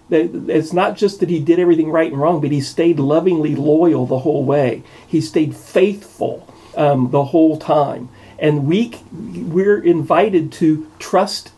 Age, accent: 40-59, American